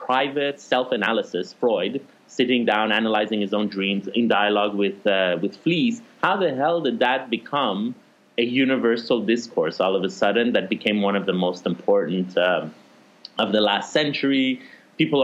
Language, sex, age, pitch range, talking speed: English, male, 30-49, 105-130 Hz, 160 wpm